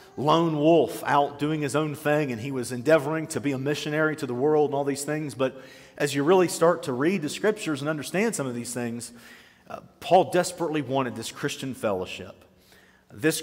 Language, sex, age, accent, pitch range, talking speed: English, male, 40-59, American, 125-155 Hz, 200 wpm